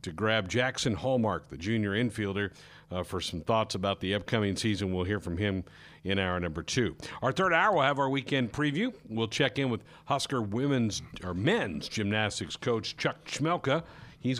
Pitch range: 105-140 Hz